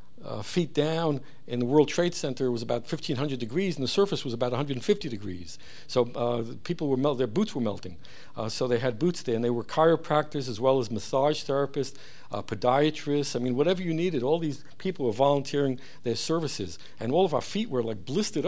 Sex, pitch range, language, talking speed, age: male, 120-150 Hz, English, 210 wpm, 60-79